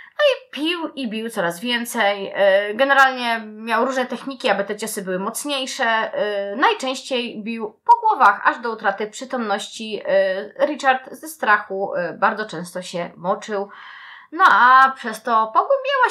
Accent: native